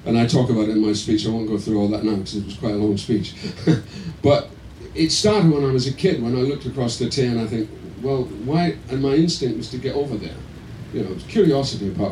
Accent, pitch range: British, 110-140 Hz